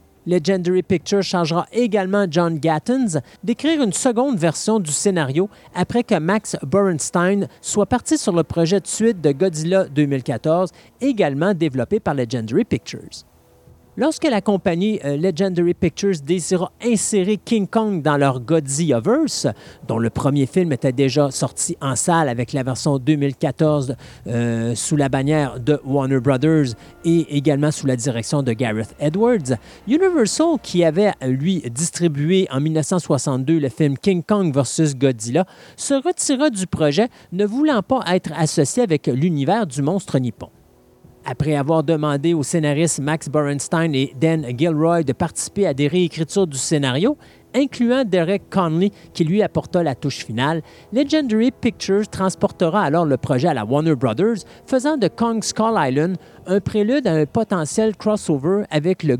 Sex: male